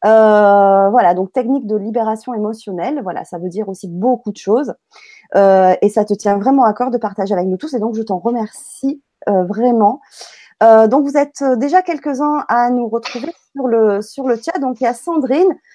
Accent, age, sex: French, 20-39, female